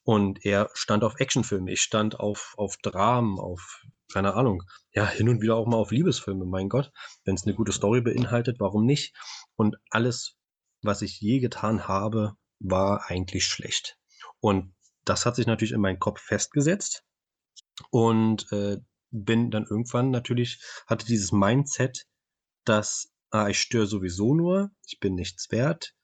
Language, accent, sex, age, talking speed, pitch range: German, German, male, 20-39, 160 wpm, 100-125 Hz